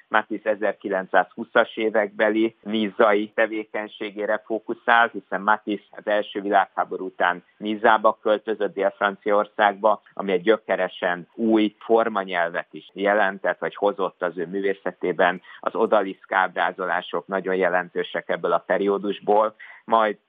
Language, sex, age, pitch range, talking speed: Hungarian, male, 50-69, 95-110 Hz, 105 wpm